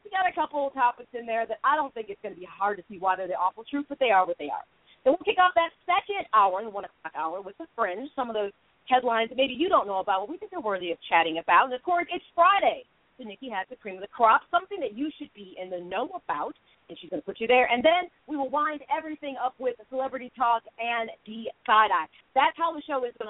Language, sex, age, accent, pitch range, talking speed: English, female, 40-59, American, 215-300 Hz, 285 wpm